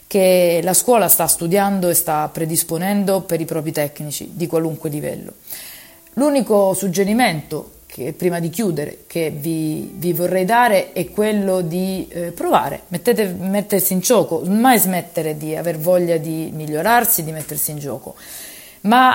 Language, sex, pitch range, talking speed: Italian, female, 165-195 Hz, 145 wpm